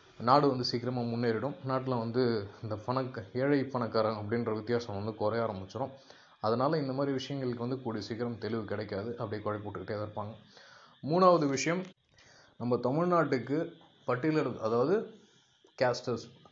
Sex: male